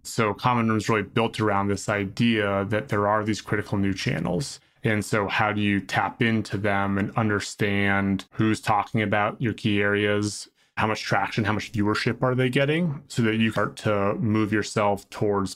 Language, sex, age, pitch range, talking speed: English, male, 20-39, 100-115 Hz, 190 wpm